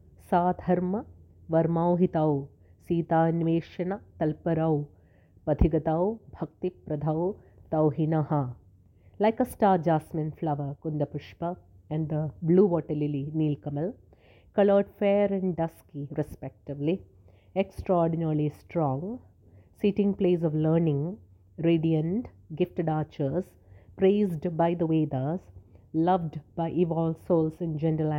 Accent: Indian